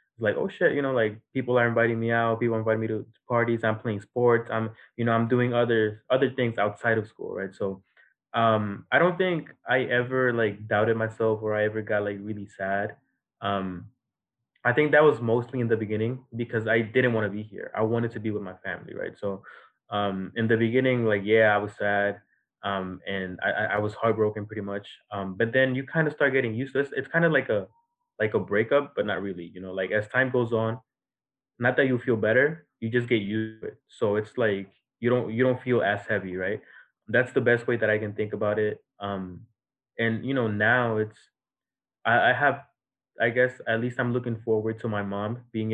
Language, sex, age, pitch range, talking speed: English, male, 20-39, 105-120 Hz, 225 wpm